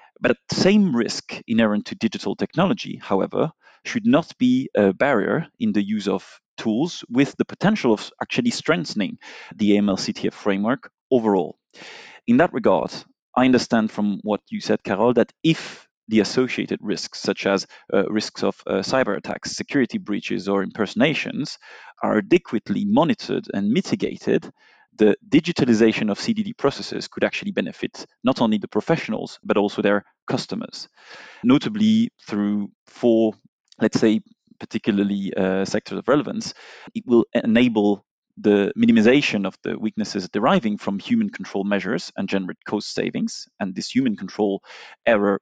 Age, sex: 30-49, male